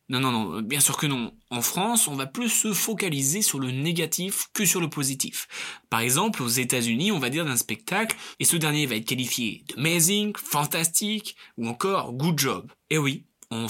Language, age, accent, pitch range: French, 20-39, French, 125-170 Hz